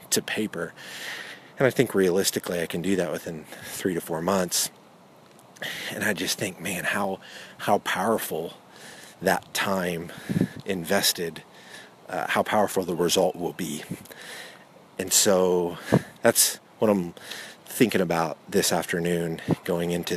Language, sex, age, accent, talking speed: English, male, 30-49, American, 130 wpm